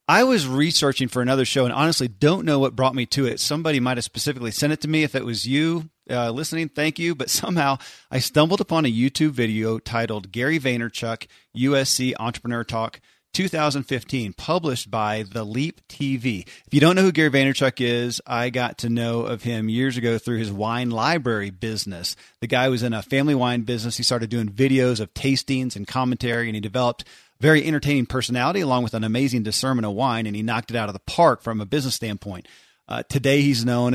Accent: American